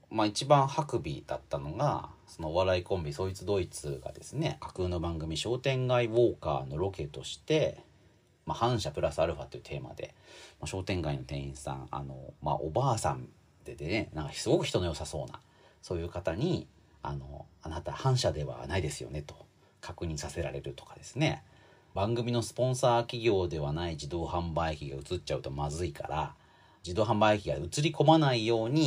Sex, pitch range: male, 75-115 Hz